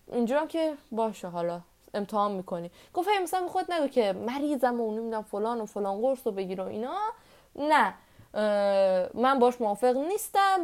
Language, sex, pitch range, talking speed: Persian, female, 190-270 Hz, 150 wpm